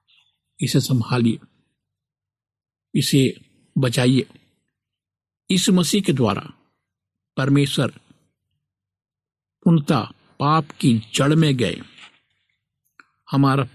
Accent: native